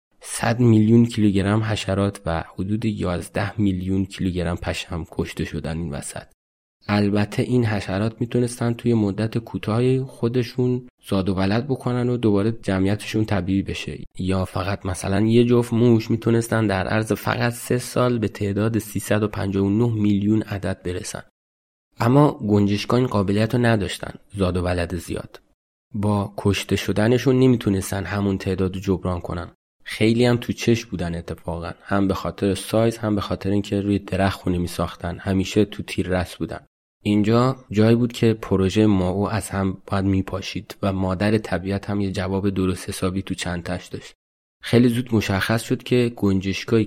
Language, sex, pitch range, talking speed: Persian, male, 95-110 Hz, 155 wpm